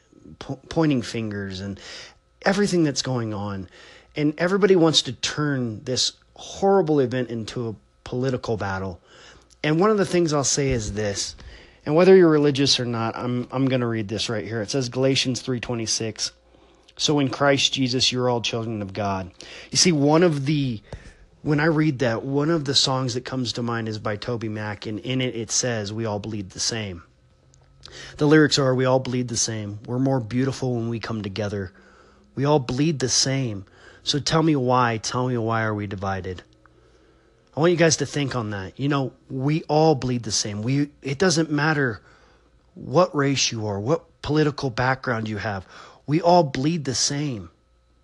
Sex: male